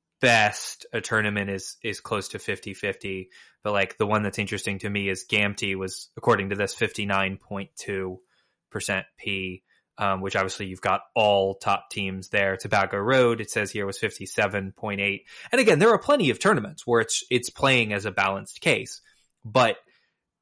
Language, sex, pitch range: English, male, 100-120 Hz